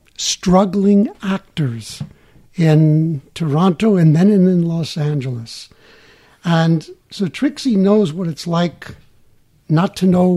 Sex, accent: male, American